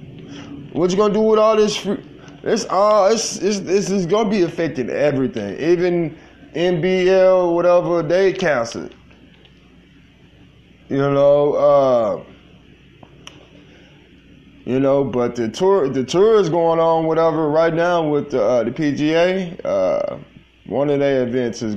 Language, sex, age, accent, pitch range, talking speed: English, male, 20-39, American, 110-150 Hz, 145 wpm